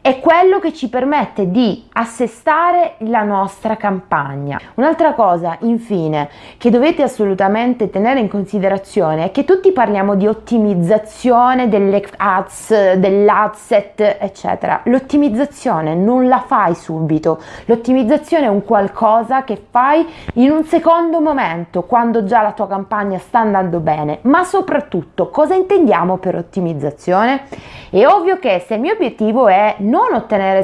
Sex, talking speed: female, 135 wpm